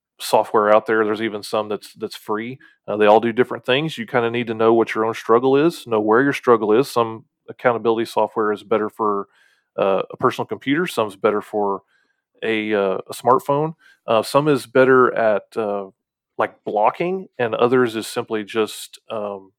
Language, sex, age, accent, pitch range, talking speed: English, male, 30-49, American, 105-130 Hz, 195 wpm